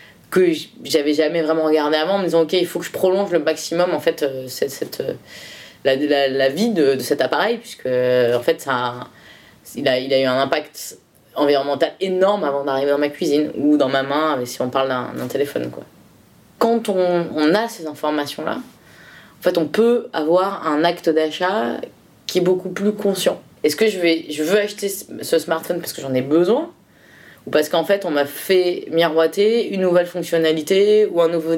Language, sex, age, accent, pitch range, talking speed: French, female, 20-39, French, 150-190 Hz, 200 wpm